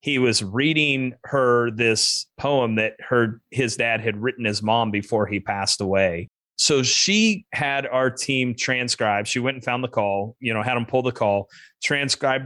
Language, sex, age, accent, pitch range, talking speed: English, male, 30-49, American, 105-130 Hz, 185 wpm